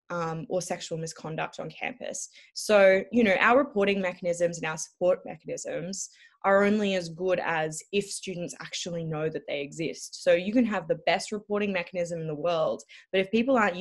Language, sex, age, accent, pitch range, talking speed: English, female, 10-29, Australian, 170-205 Hz, 185 wpm